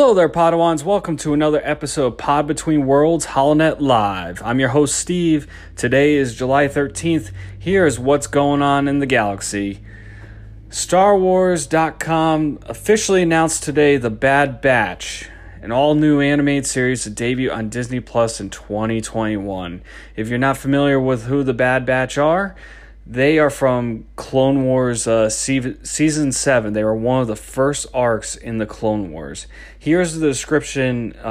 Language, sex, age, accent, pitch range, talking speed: English, male, 30-49, American, 110-150 Hz, 155 wpm